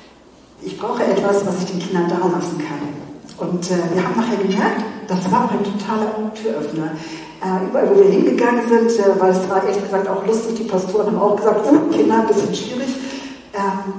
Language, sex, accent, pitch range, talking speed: German, female, German, 185-225 Hz, 195 wpm